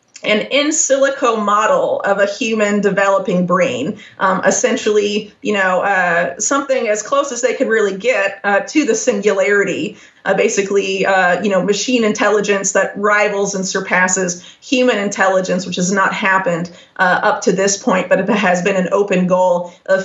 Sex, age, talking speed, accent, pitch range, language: female, 30-49, 165 wpm, American, 190-210 Hz, English